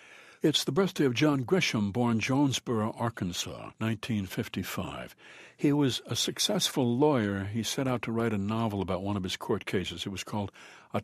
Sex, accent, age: male, American, 60-79